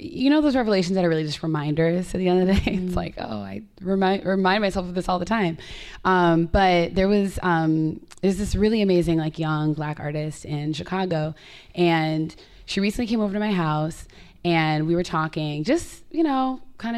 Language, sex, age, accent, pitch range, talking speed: English, female, 20-39, American, 160-190 Hz, 205 wpm